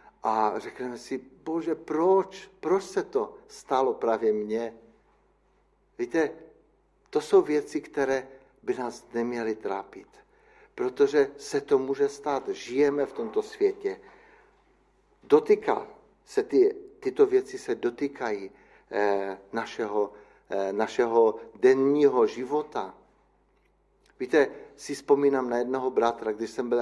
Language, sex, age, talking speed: Czech, male, 60-79, 115 wpm